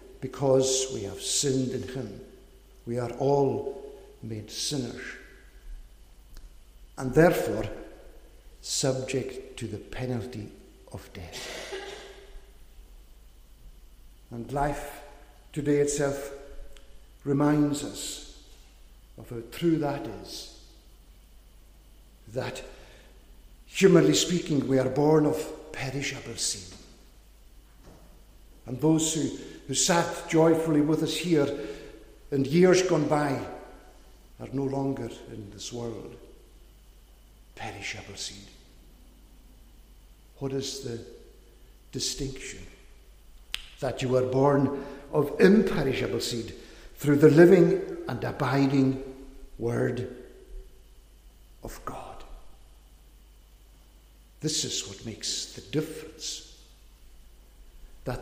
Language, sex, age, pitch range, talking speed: English, male, 60-79, 110-150 Hz, 90 wpm